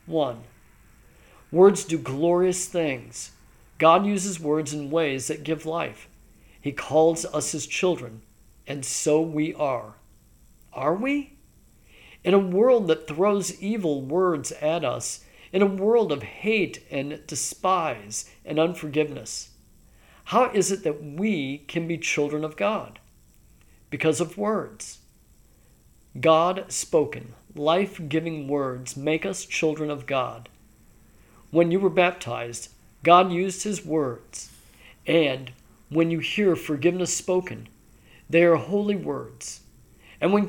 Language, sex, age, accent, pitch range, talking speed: English, male, 50-69, American, 140-185 Hz, 125 wpm